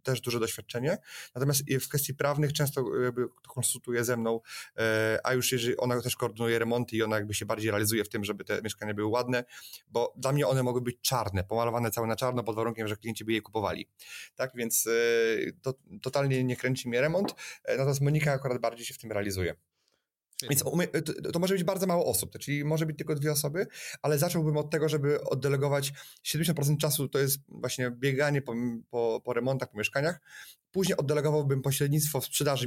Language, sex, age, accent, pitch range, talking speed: Polish, male, 30-49, native, 120-145 Hz, 185 wpm